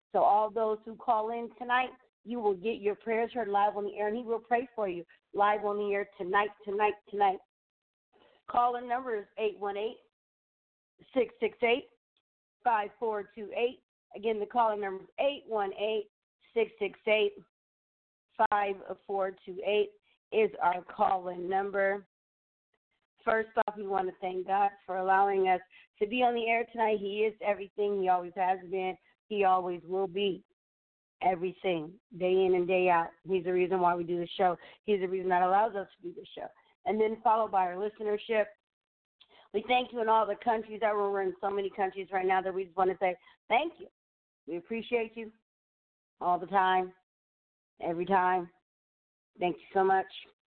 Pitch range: 190-225 Hz